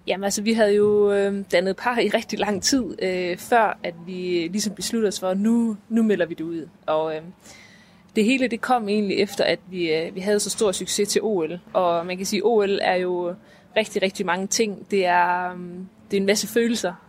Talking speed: 225 wpm